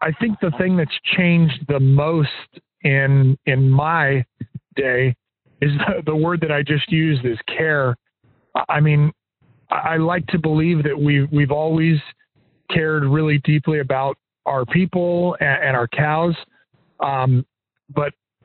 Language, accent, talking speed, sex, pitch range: English, American, 145 wpm, male, 140-165 Hz